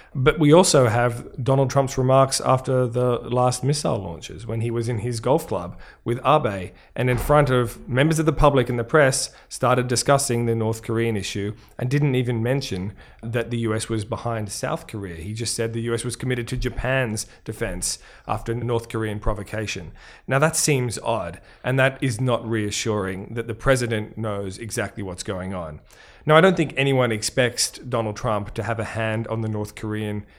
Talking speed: 190 wpm